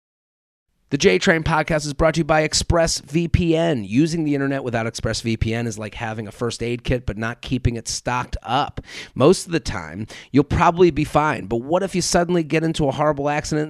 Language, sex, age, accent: English, male, 30-49, American